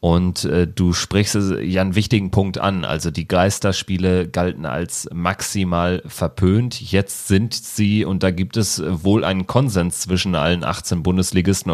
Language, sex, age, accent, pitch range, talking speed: German, male, 30-49, German, 90-105 Hz, 150 wpm